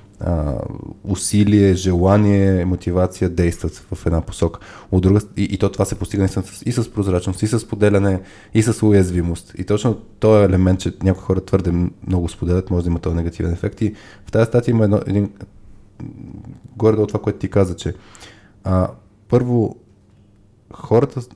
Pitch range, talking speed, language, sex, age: 90-105 Hz, 160 wpm, Bulgarian, male, 20-39